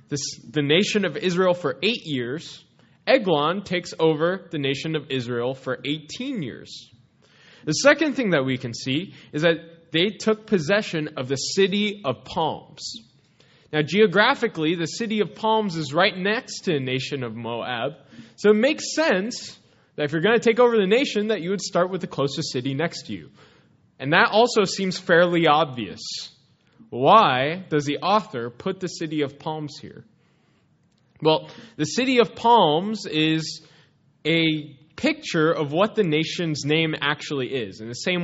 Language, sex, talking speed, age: English, male, 165 wpm, 20-39